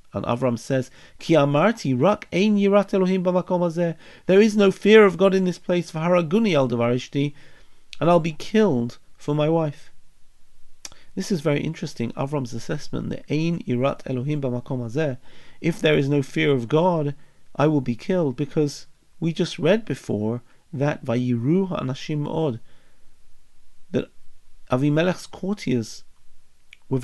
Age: 40-59